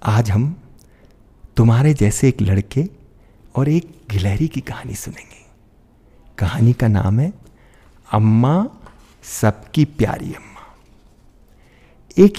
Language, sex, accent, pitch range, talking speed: Hindi, male, native, 105-135 Hz, 100 wpm